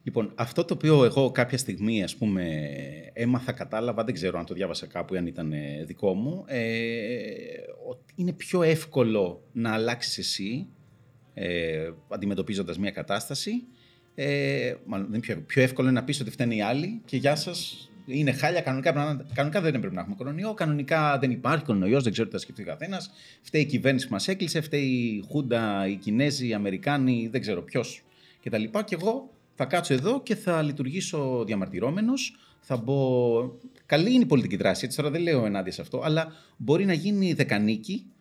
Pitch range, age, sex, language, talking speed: 115-175 Hz, 30-49, male, Greek, 180 wpm